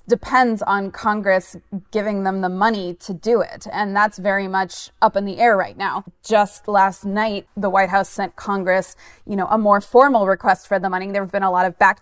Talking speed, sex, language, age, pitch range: 220 wpm, female, English, 20-39, 190-225 Hz